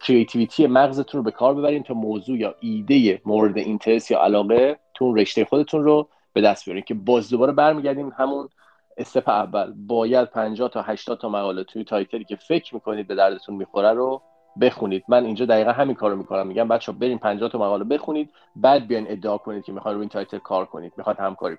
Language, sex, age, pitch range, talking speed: Persian, male, 40-59, 110-145 Hz, 195 wpm